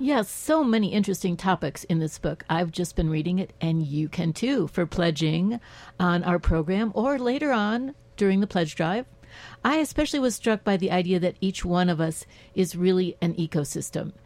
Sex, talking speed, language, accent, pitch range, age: female, 195 wpm, English, American, 175-220 Hz, 60-79